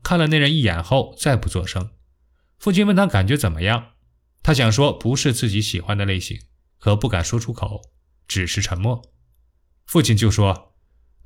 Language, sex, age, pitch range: Chinese, male, 20-39, 90-135 Hz